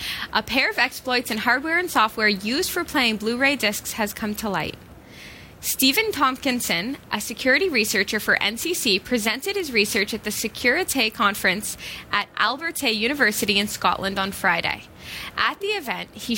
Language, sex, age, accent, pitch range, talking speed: English, female, 10-29, American, 210-265 Hz, 155 wpm